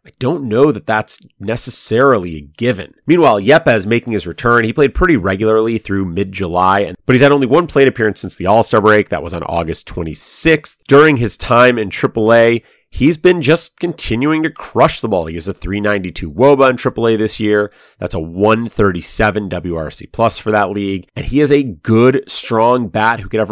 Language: English